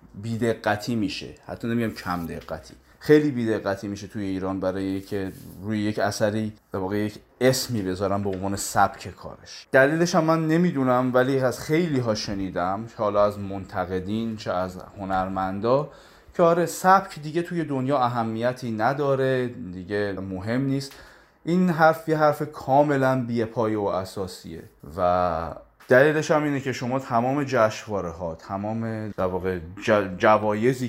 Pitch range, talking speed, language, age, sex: 95-130 Hz, 140 wpm, Persian, 30-49, male